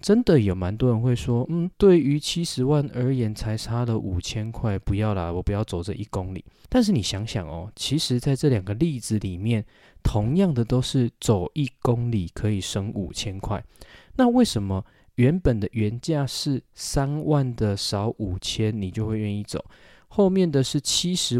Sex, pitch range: male, 105-135 Hz